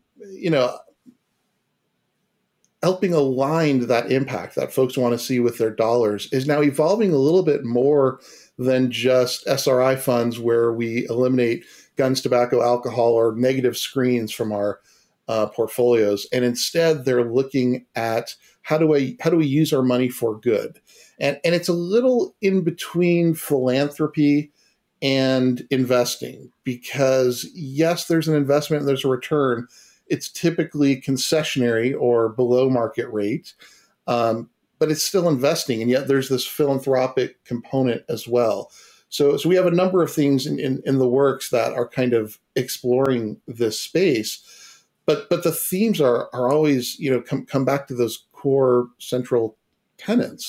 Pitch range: 120-150 Hz